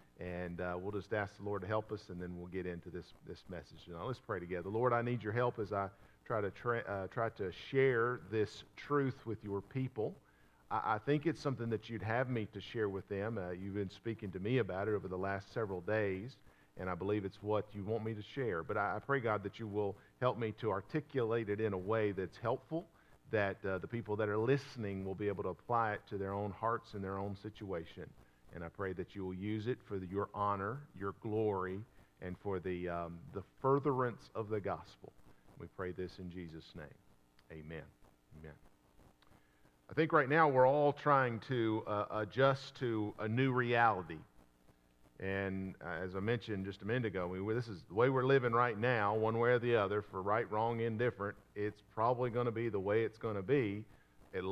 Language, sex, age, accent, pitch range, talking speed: English, male, 50-69, American, 95-115 Hz, 220 wpm